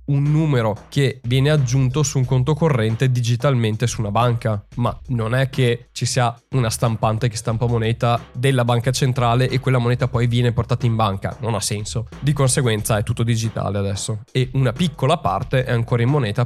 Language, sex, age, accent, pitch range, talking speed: Italian, male, 20-39, native, 115-135 Hz, 190 wpm